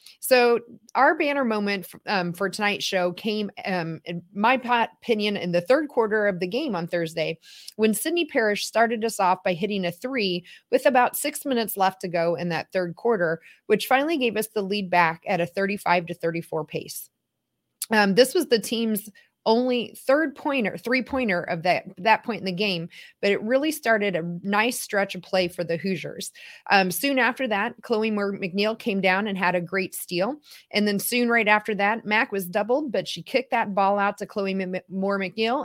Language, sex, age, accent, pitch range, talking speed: English, female, 30-49, American, 180-230 Hz, 195 wpm